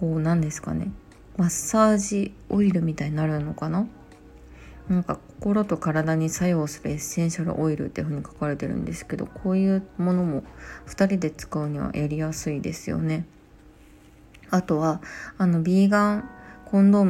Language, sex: Japanese, female